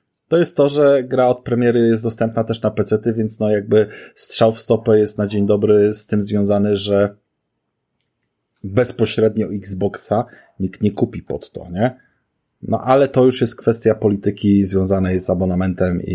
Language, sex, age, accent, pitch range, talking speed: Polish, male, 30-49, native, 95-115 Hz, 170 wpm